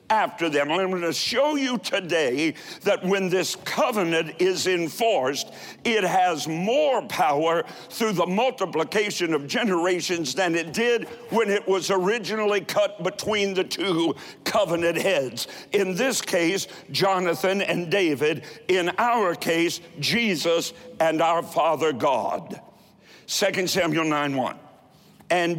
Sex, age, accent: male, 60-79, American